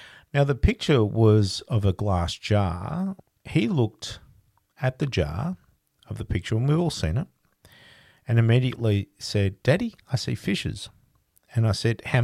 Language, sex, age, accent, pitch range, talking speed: English, male, 50-69, Australian, 95-120 Hz, 155 wpm